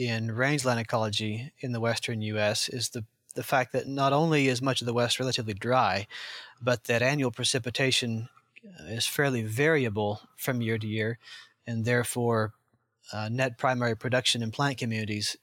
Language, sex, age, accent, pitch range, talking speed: English, male, 30-49, American, 115-135 Hz, 160 wpm